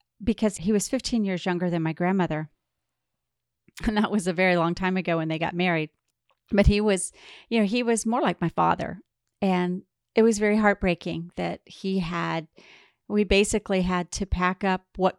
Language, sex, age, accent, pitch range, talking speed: English, female, 40-59, American, 170-200 Hz, 185 wpm